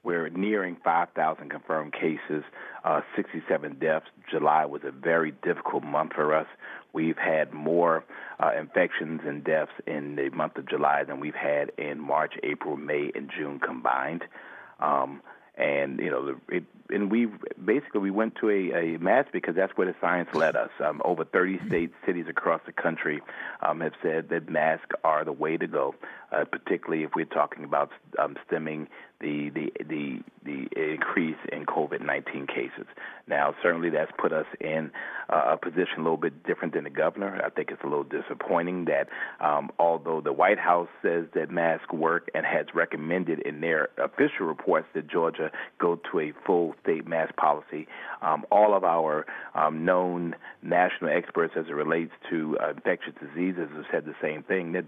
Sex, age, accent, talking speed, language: male, 40-59, American, 175 wpm, English